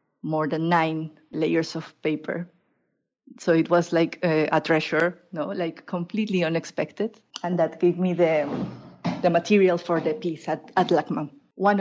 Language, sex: English, female